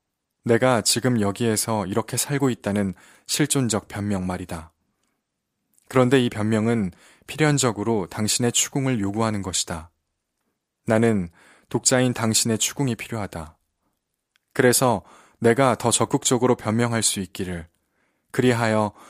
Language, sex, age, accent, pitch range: Korean, male, 20-39, native, 95-120 Hz